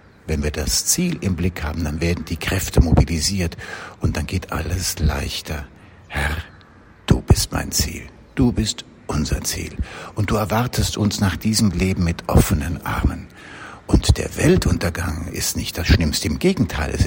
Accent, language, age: German, German, 60-79